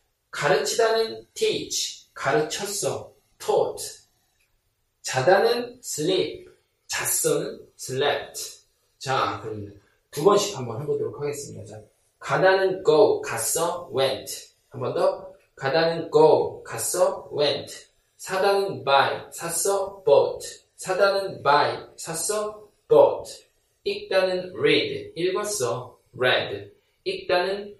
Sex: male